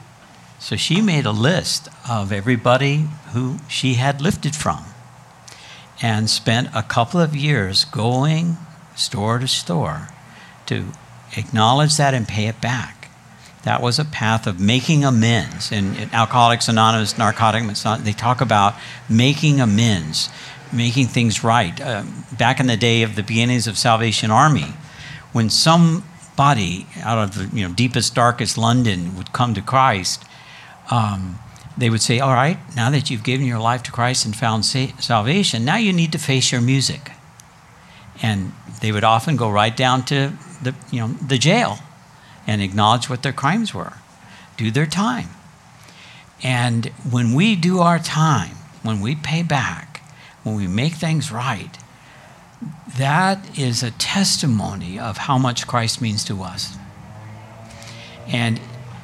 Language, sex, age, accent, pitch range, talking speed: English, male, 60-79, American, 110-145 Hz, 150 wpm